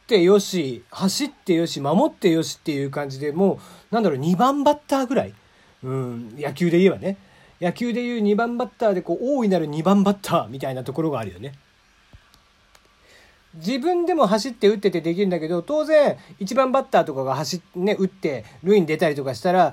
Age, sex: 40-59, male